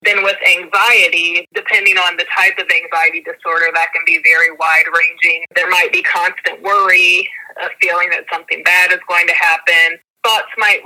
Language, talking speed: English, 175 wpm